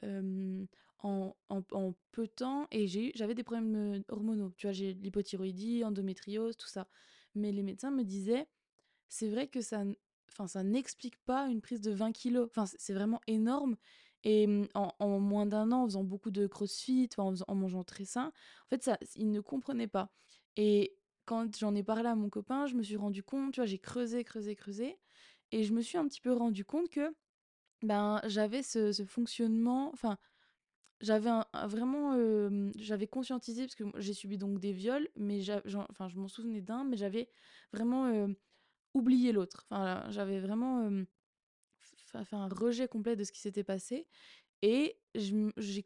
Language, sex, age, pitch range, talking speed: French, female, 20-39, 200-245 Hz, 185 wpm